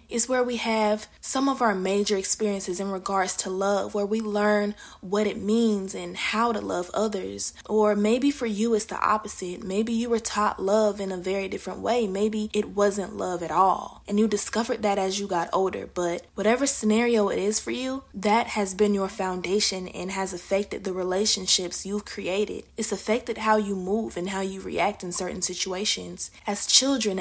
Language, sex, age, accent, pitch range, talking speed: English, female, 20-39, American, 190-220 Hz, 195 wpm